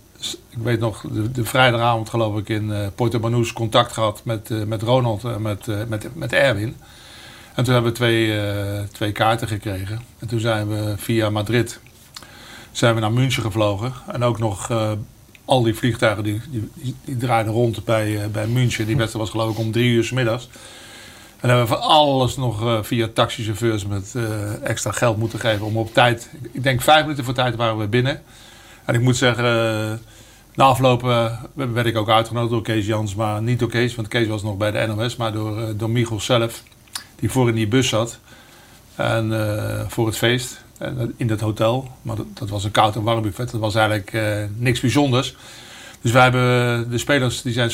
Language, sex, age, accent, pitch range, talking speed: Dutch, male, 50-69, Dutch, 110-120 Hz, 205 wpm